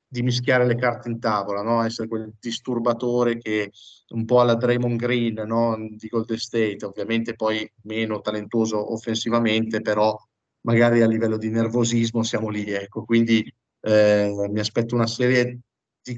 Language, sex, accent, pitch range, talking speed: Italian, male, native, 105-125 Hz, 150 wpm